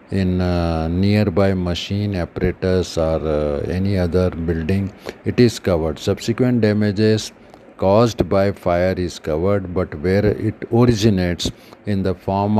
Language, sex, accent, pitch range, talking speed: Hindi, male, native, 90-105 Hz, 130 wpm